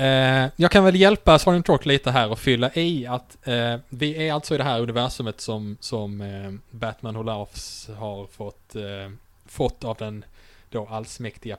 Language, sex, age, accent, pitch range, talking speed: English, male, 20-39, Norwegian, 105-130 Hz, 155 wpm